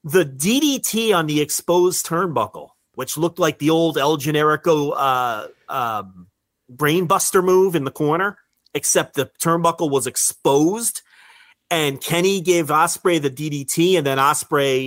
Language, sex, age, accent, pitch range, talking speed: English, male, 40-59, American, 145-190 Hz, 140 wpm